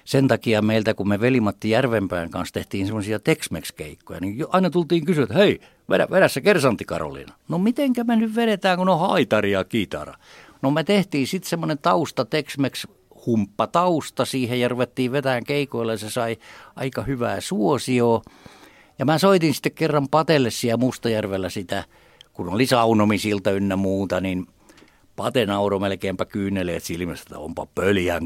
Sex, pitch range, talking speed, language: male, 100-160 Hz, 150 wpm, Finnish